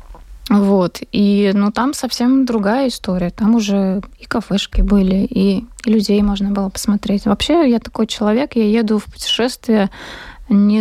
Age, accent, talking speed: 20-39, native, 145 wpm